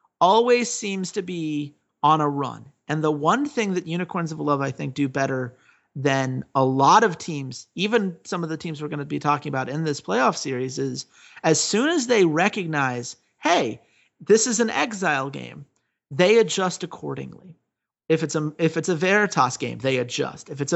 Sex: male